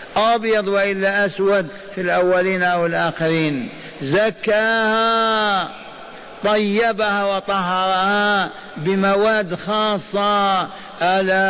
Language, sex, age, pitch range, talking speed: Arabic, male, 50-69, 170-210 Hz, 70 wpm